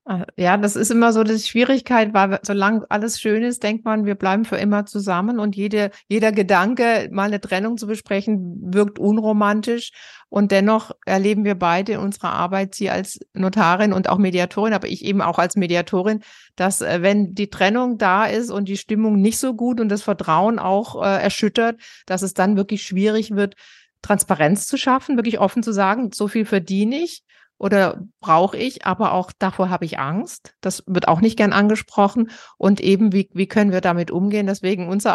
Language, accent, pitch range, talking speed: German, German, 190-220 Hz, 185 wpm